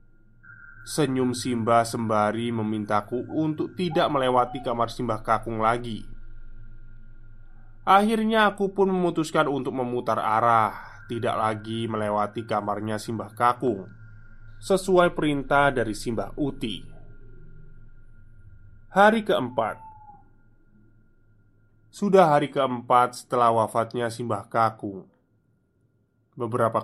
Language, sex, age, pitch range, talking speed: Indonesian, male, 20-39, 110-140 Hz, 85 wpm